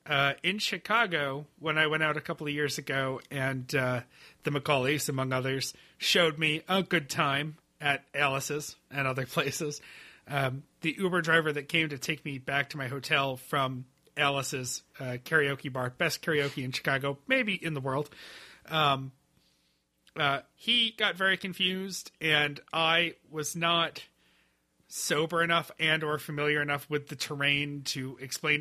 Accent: American